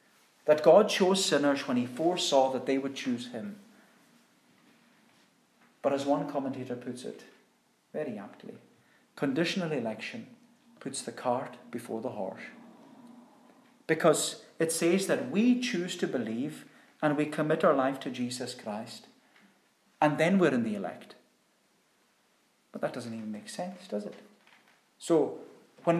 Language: English